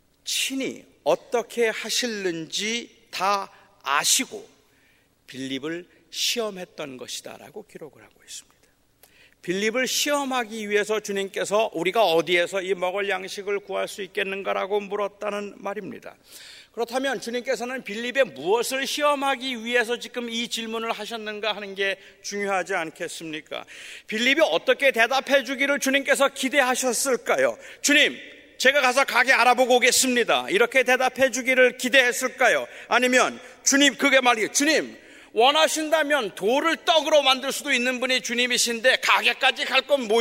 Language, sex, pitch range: Korean, male, 230-280 Hz